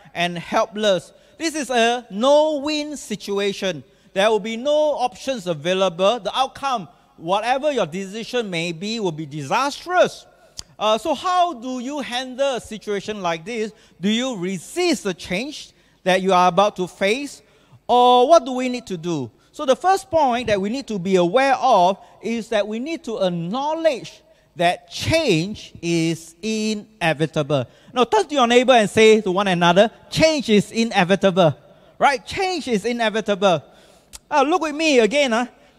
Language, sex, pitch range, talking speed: English, male, 190-270 Hz, 160 wpm